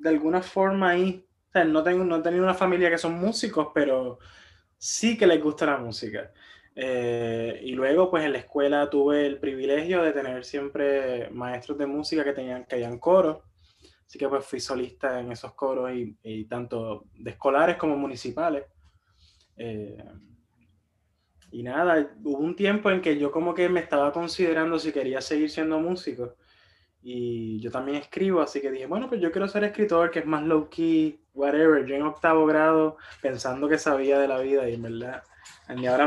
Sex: male